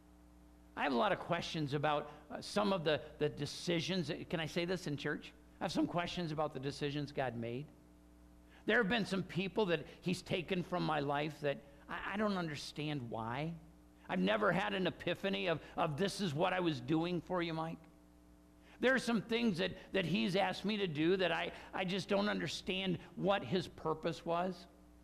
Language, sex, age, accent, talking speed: English, male, 50-69, American, 200 wpm